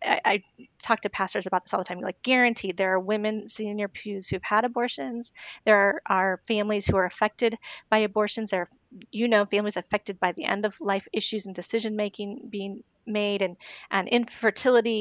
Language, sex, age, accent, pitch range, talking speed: English, female, 30-49, American, 195-235 Hz, 185 wpm